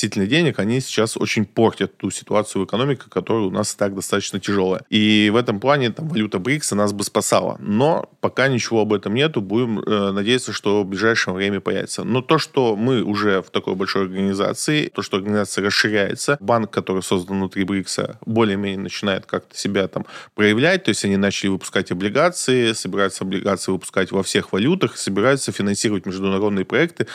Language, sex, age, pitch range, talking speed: Russian, male, 20-39, 100-115 Hz, 170 wpm